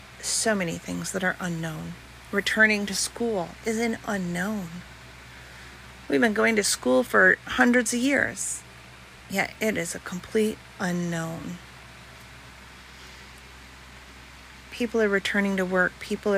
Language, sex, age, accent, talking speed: English, female, 40-59, American, 120 wpm